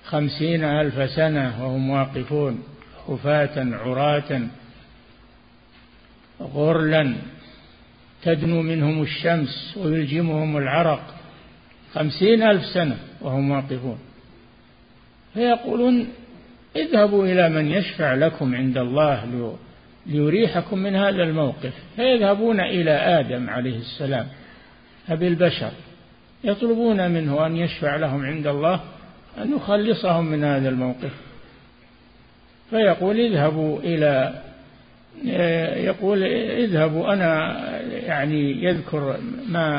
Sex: male